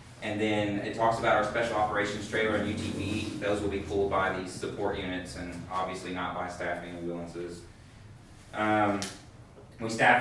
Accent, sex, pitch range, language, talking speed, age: American, male, 100-115 Hz, English, 165 wpm, 30-49